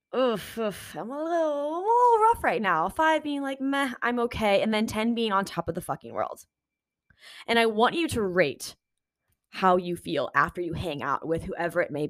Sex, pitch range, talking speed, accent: female, 190-255 Hz, 220 wpm, American